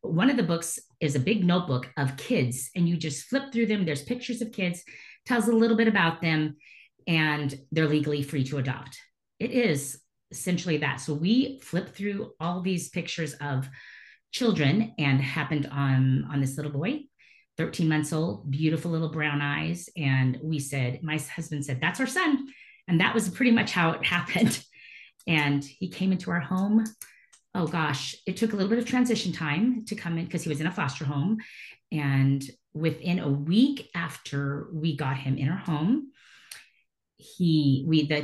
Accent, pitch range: American, 140-195 Hz